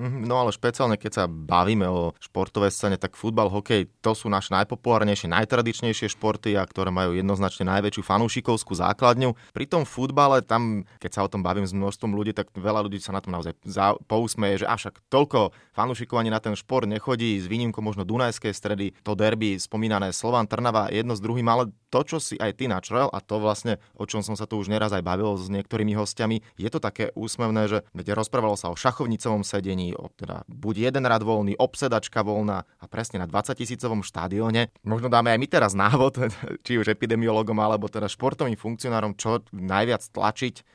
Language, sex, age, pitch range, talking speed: Slovak, male, 30-49, 100-120 Hz, 190 wpm